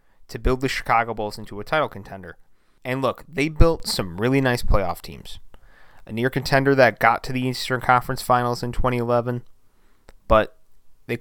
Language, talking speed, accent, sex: English, 170 wpm, American, male